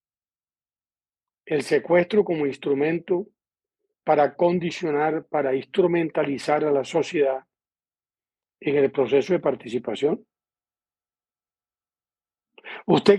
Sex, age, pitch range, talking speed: male, 40-59, 150-210 Hz, 75 wpm